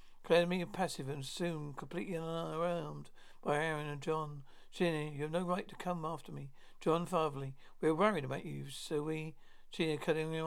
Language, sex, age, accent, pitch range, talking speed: English, male, 60-79, British, 145-175 Hz, 180 wpm